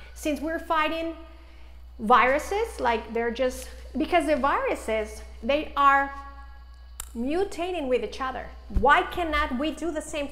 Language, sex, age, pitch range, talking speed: English, female, 40-59, 220-320 Hz, 130 wpm